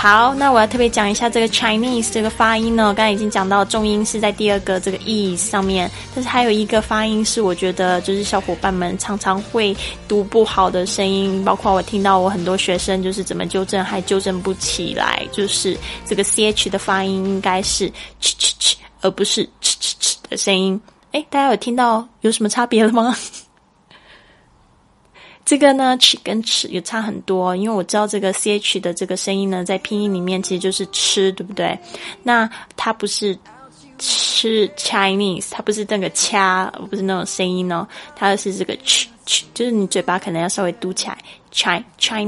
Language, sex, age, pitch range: Chinese, female, 20-39, 190-220 Hz